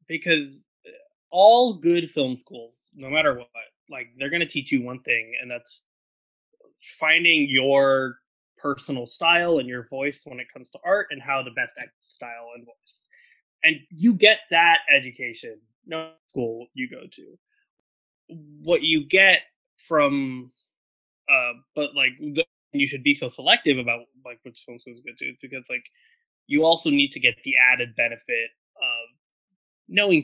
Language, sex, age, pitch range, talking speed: English, male, 20-39, 125-165 Hz, 155 wpm